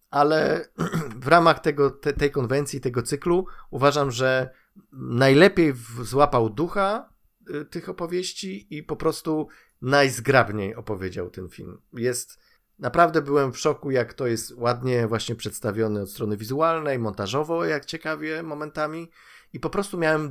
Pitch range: 115-155 Hz